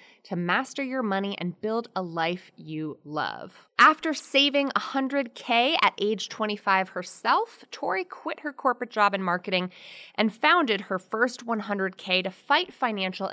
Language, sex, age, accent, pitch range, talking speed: English, female, 20-39, American, 175-250 Hz, 145 wpm